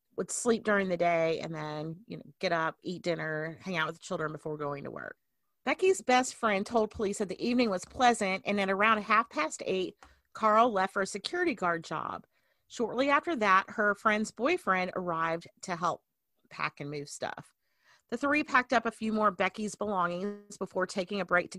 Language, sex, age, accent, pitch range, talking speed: English, female, 40-59, American, 175-220 Hz, 200 wpm